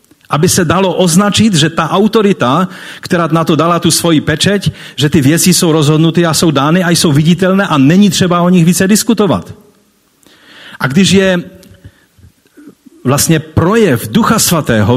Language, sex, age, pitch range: Czech, male, 40-59, 135-190 Hz